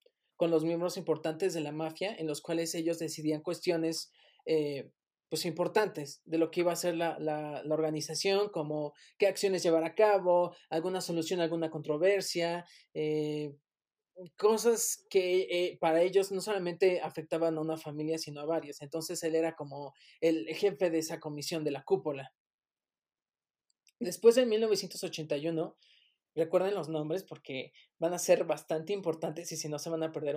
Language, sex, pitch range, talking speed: Spanish, male, 155-180 Hz, 165 wpm